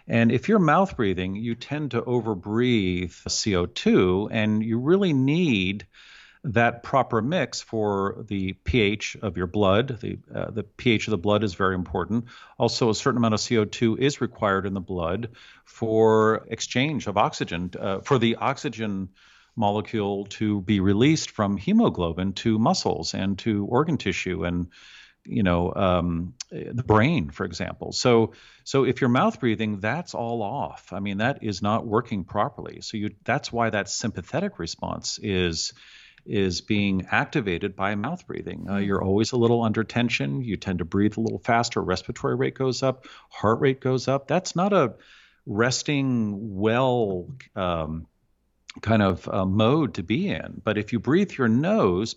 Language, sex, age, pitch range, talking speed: English, male, 50-69, 95-120 Hz, 165 wpm